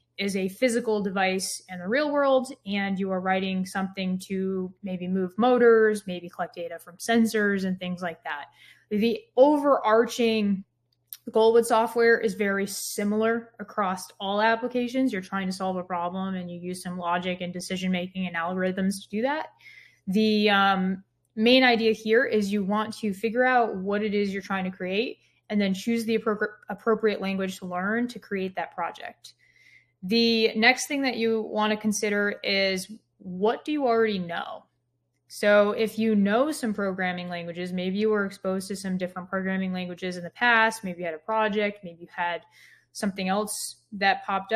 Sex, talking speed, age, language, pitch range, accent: female, 175 wpm, 20-39, English, 185-225 Hz, American